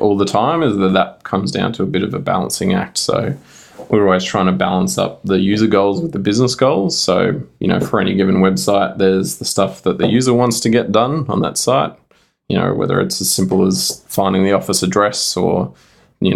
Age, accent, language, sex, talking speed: 20-39, Australian, English, male, 230 wpm